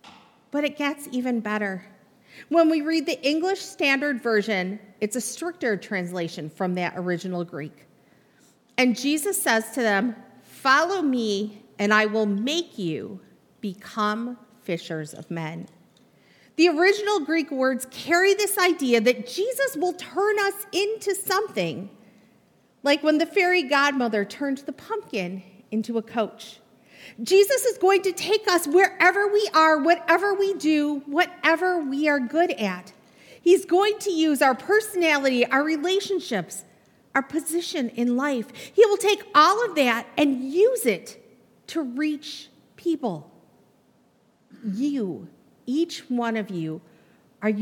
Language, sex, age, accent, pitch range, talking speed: English, female, 40-59, American, 215-340 Hz, 135 wpm